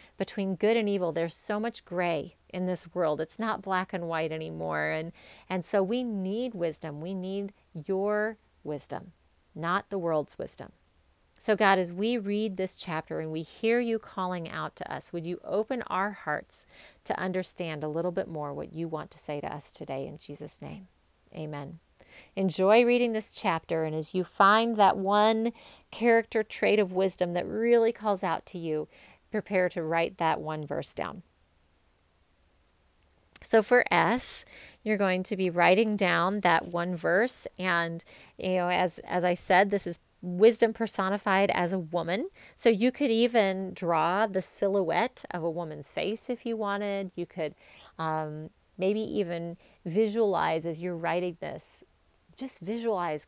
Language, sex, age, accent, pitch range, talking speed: English, female, 40-59, American, 160-210 Hz, 165 wpm